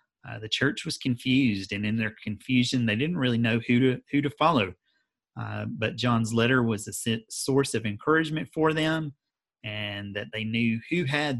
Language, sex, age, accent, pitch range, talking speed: English, male, 30-49, American, 105-125 Hz, 185 wpm